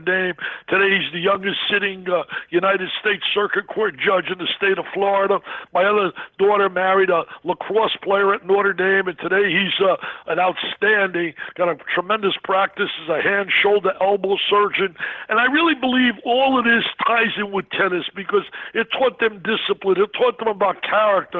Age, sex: 60-79, male